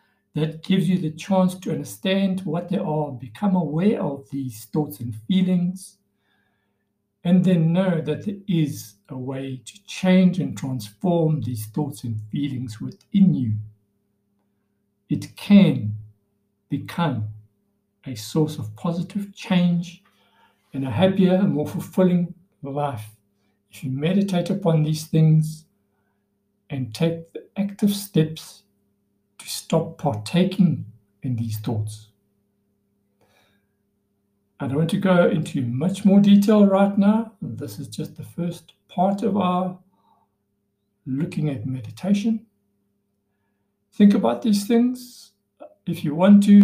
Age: 60-79